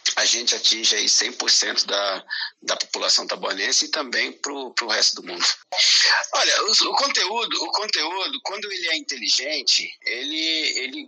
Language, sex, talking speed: Portuguese, male, 150 wpm